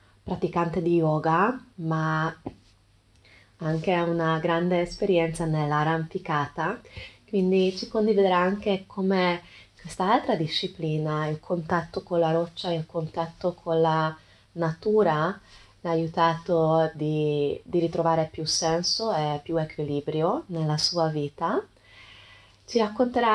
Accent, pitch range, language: native, 155-180 Hz, Italian